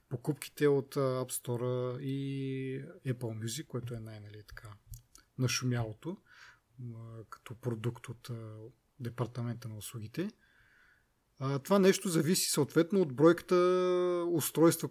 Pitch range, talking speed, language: 120-145 Hz, 95 wpm, Bulgarian